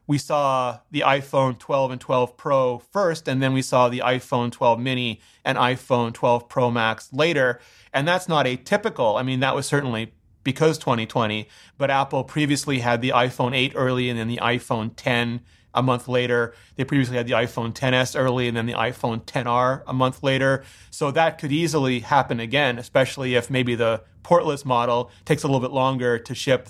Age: 30-49